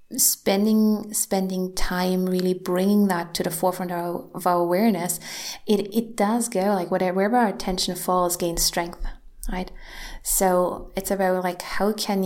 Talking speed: 150 wpm